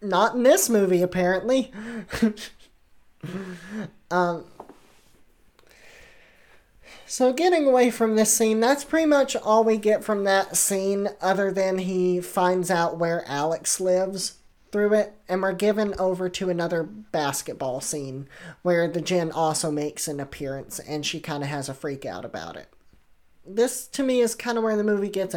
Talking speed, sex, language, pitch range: 155 wpm, male, English, 165-205 Hz